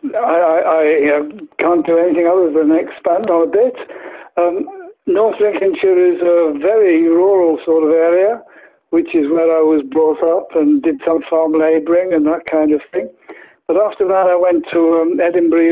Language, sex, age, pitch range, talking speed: English, male, 60-79, 160-190 Hz, 175 wpm